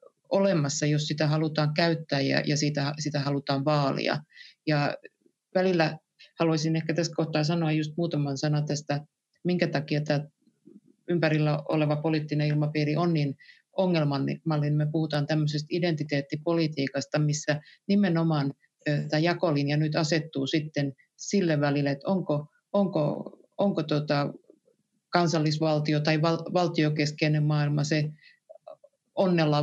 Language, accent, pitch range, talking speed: Finnish, native, 145-160 Hz, 115 wpm